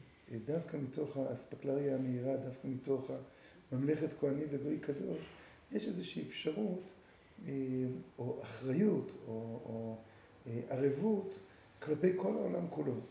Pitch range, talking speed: 125-180 Hz, 95 wpm